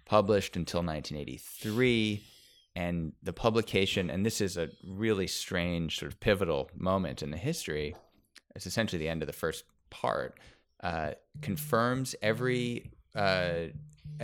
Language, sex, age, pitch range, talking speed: English, male, 20-39, 80-105 Hz, 130 wpm